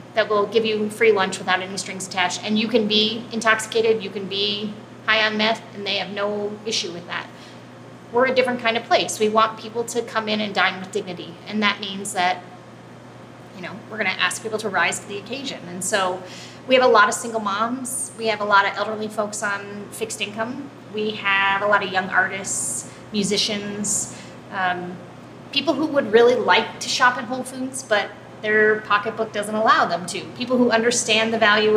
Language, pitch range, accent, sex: English, 205-230 Hz, American, female